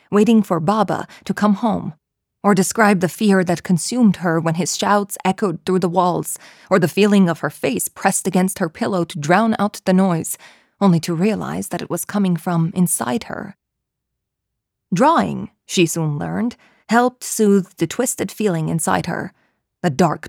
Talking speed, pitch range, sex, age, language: 170 wpm, 170-205 Hz, female, 20-39, English